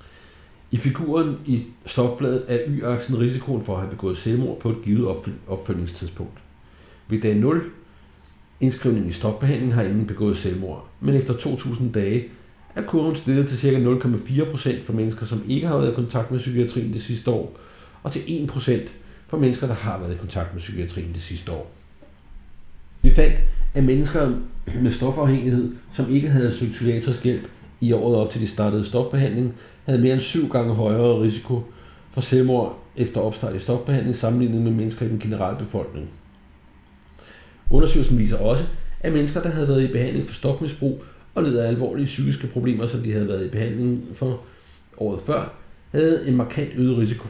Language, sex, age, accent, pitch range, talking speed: Danish, male, 60-79, native, 105-130 Hz, 170 wpm